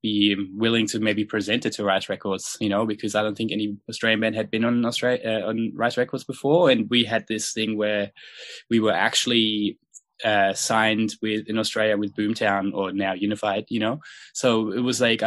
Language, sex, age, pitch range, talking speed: English, male, 10-29, 105-115 Hz, 205 wpm